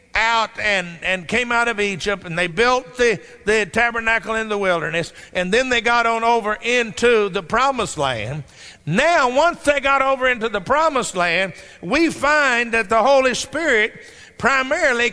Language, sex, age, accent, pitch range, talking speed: English, male, 50-69, American, 210-275 Hz, 165 wpm